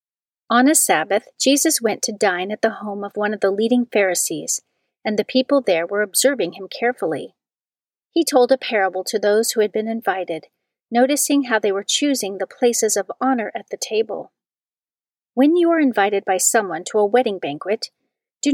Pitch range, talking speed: 200-260 Hz, 185 wpm